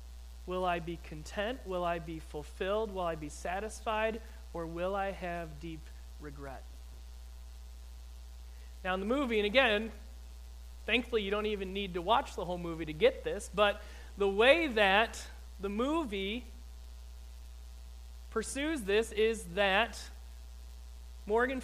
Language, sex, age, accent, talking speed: English, male, 30-49, American, 135 wpm